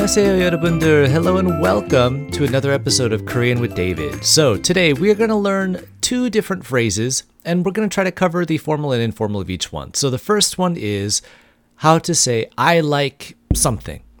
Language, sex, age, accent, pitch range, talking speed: English, male, 30-49, American, 115-175 Hz, 190 wpm